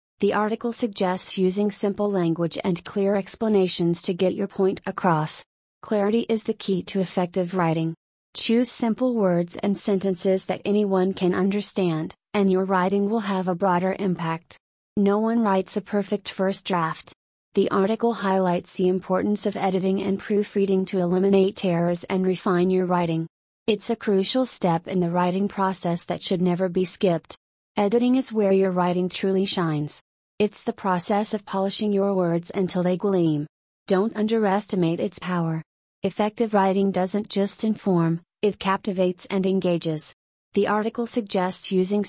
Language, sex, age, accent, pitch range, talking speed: English, female, 30-49, American, 180-205 Hz, 155 wpm